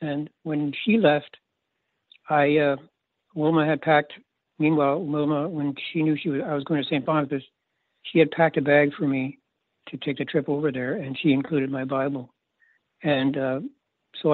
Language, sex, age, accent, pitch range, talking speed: English, male, 60-79, American, 135-155 Hz, 180 wpm